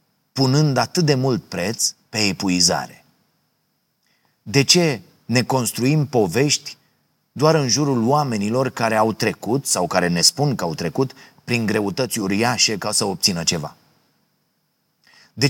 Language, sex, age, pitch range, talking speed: Romanian, male, 30-49, 105-130 Hz, 130 wpm